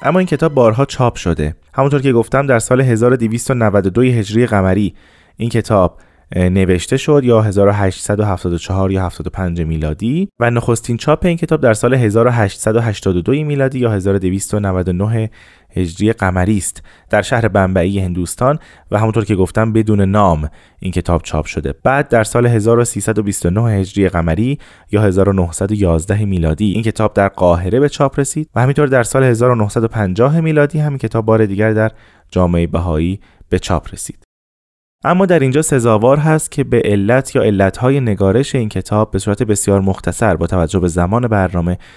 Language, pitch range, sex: Persian, 95-125 Hz, male